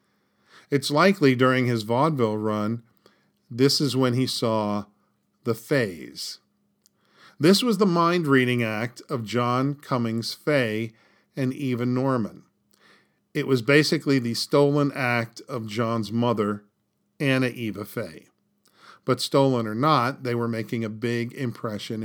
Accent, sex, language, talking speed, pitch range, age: American, male, English, 130 wpm, 115-145 Hz, 50-69